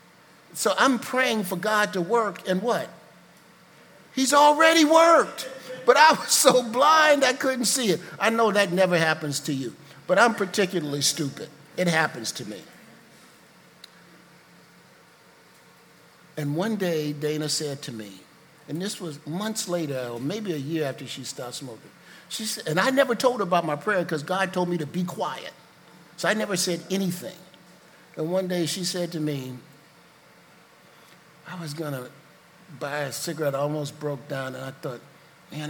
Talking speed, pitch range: 170 wpm, 150-190 Hz